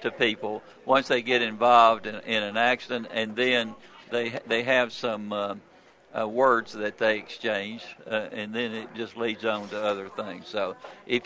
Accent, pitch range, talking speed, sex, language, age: American, 110-135 Hz, 180 wpm, male, English, 60-79